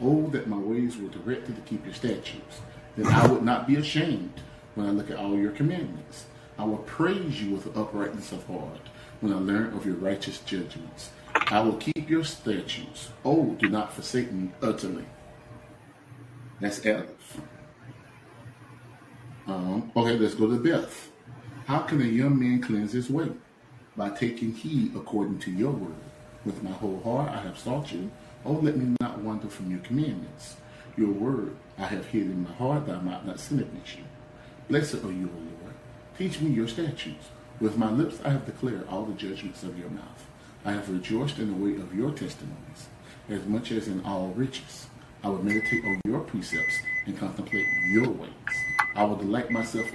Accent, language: American, English